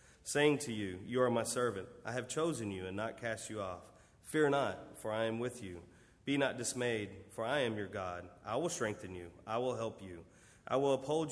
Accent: American